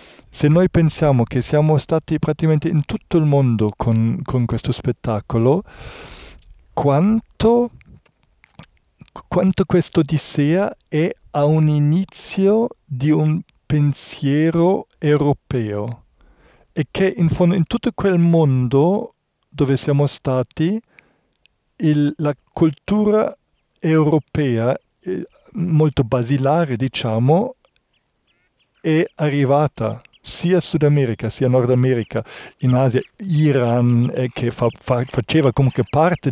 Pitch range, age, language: 125-160 Hz, 50-69, Italian